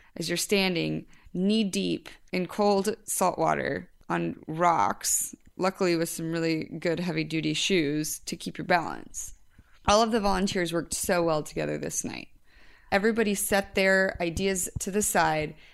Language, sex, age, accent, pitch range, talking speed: English, female, 20-39, American, 165-215 Hz, 155 wpm